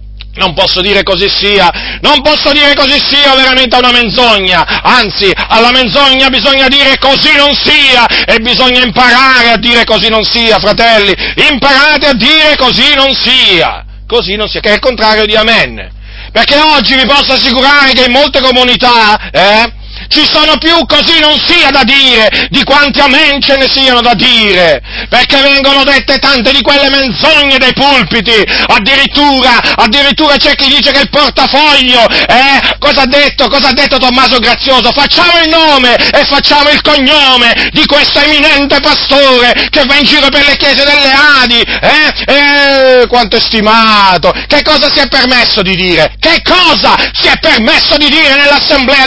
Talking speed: 170 wpm